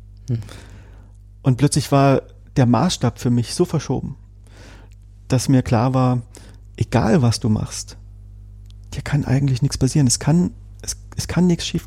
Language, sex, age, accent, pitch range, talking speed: German, male, 40-59, German, 100-140 Hz, 145 wpm